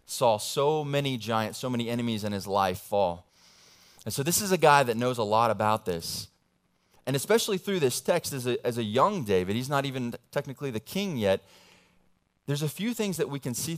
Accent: American